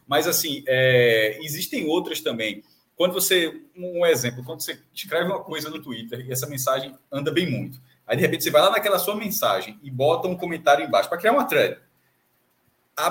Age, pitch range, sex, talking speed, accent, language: 20-39, 135-190 Hz, male, 190 wpm, Brazilian, Portuguese